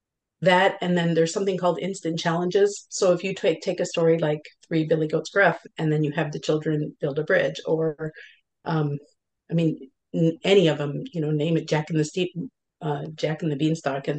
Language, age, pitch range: English, 40-59, 160-190 Hz